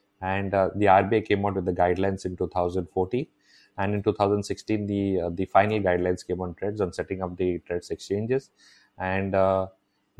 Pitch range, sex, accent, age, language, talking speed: 95-110 Hz, male, Indian, 30-49, English, 175 wpm